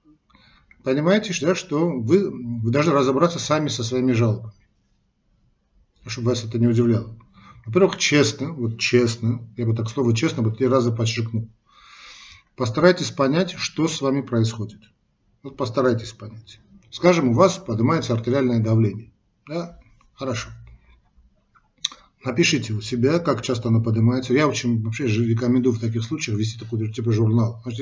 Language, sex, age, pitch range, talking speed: Russian, male, 50-69, 115-145 Hz, 140 wpm